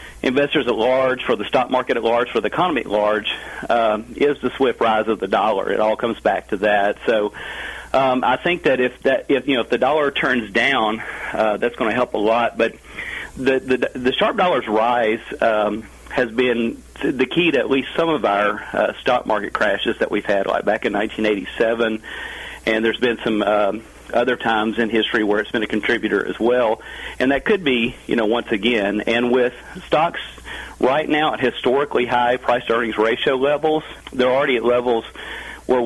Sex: male